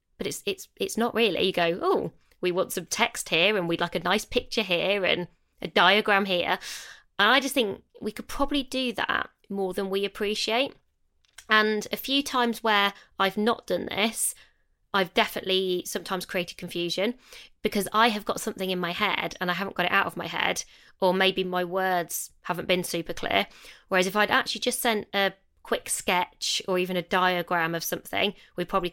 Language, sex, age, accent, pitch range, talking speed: English, female, 20-39, British, 180-220 Hz, 195 wpm